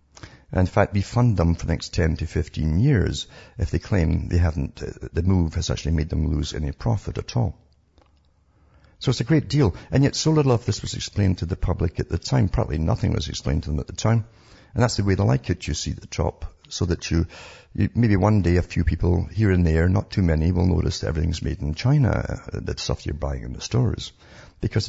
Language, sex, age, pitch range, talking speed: English, male, 60-79, 80-105 Hz, 240 wpm